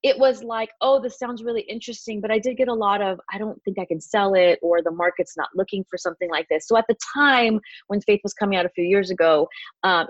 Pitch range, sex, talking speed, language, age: 160-205 Hz, female, 270 wpm, English, 30-49